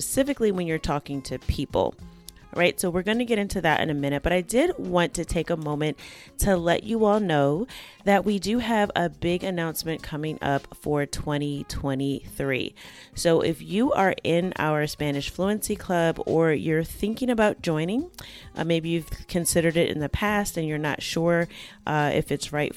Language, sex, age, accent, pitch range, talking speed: English, female, 30-49, American, 155-205 Hz, 185 wpm